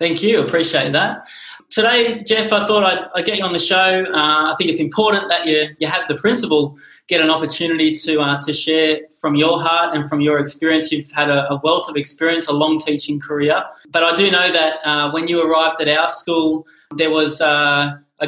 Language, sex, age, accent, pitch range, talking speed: English, male, 20-39, Australian, 145-165 Hz, 215 wpm